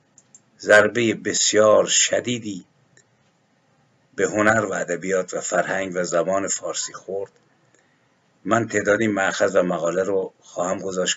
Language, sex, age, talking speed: Persian, male, 50-69, 115 wpm